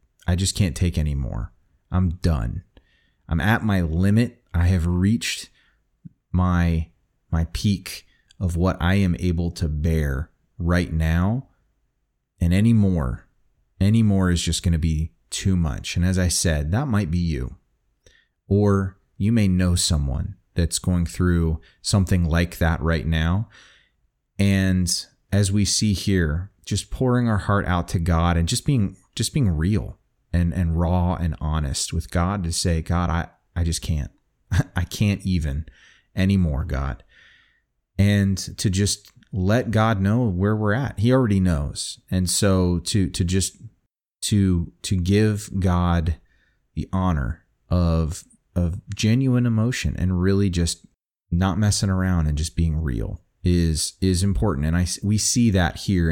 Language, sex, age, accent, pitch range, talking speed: English, male, 30-49, American, 85-100 Hz, 155 wpm